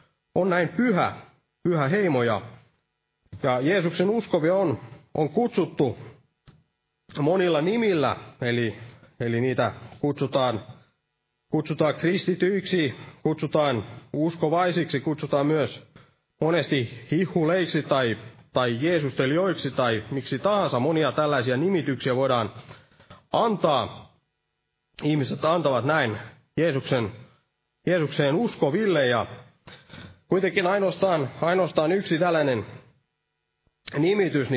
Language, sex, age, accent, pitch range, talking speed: Finnish, male, 30-49, native, 125-165 Hz, 85 wpm